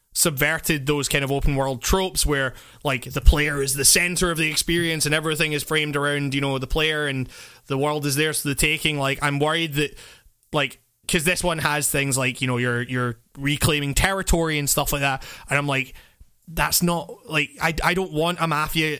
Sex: male